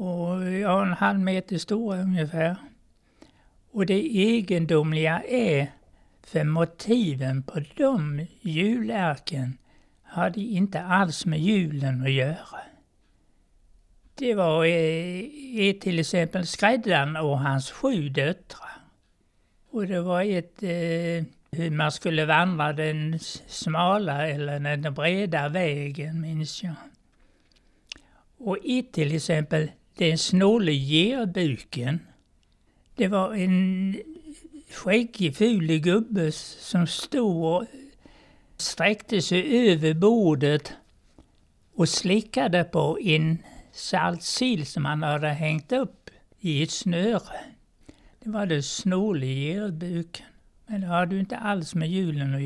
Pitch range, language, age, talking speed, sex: 155-200 Hz, Swedish, 60-79, 110 wpm, male